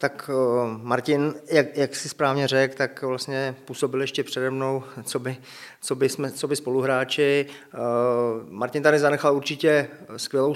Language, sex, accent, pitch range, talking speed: Czech, male, native, 135-150 Hz, 130 wpm